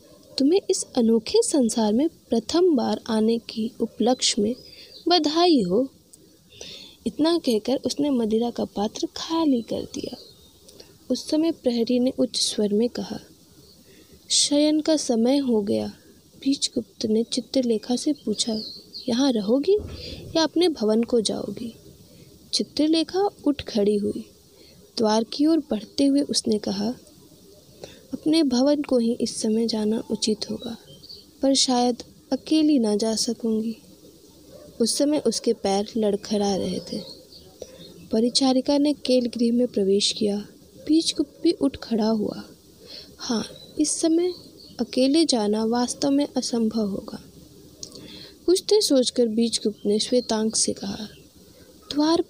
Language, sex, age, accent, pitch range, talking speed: Hindi, female, 20-39, native, 220-290 Hz, 125 wpm